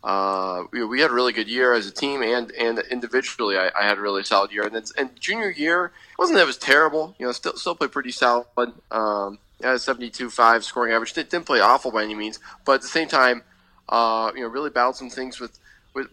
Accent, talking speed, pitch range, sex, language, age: American, 260 wpm, 110-120 Hz, male, English, 20-39